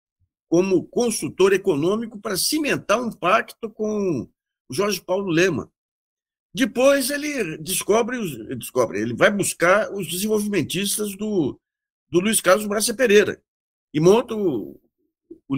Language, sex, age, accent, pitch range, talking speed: Portuguese, male, 60-79, Brazilian, 155-250 Hz, 110 wpm